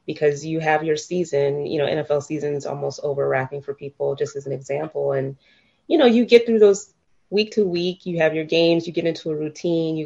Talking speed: 225 wpm